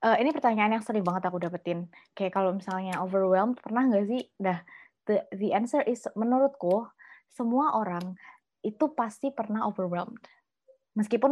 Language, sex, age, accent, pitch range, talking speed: Indonesian, female, 20-39, native, 180-225 Hz, 145 wpm